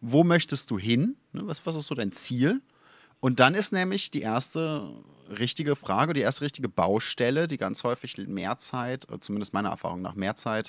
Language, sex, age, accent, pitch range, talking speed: German, male, 30-49, German, 100-130 Hz, 185 wpm